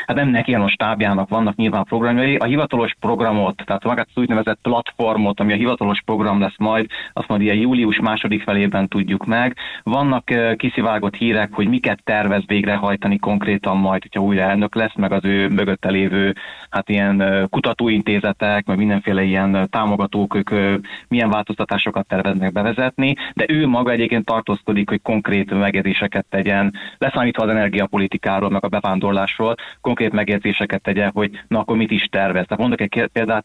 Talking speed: 160 wpm